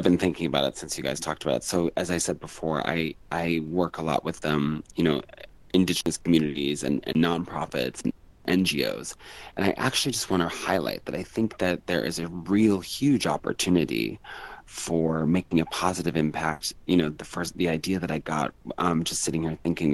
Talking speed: 210 wpm